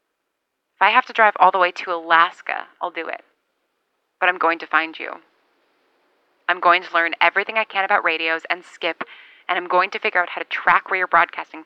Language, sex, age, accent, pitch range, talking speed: English, female, 20-39, American, 175-230 Hz, 215 wpm